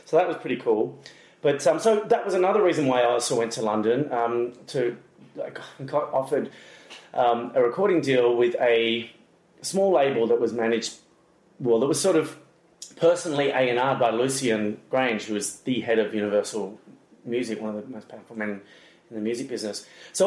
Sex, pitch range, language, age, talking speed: male, 110-135 Hz, English, 30-49, 190 wpm